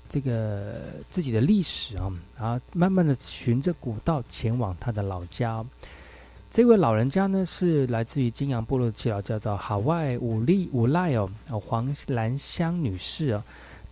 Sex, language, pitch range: male, Chinese, 110-150 Hz